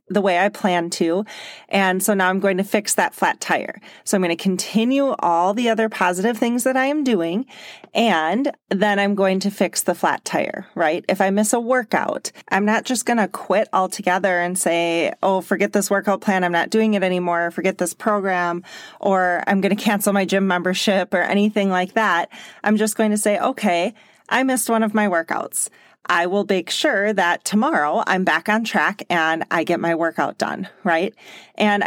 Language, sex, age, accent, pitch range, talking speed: English, female, 30-49, American, 175-210 Hz, 205 wpm